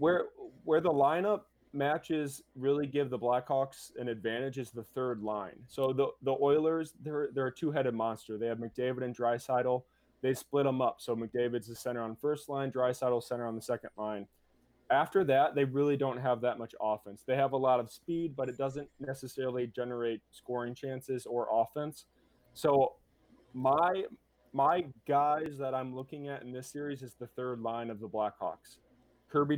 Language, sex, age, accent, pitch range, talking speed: English, male, 20-39, American, 120-135 Hz, 180 wpm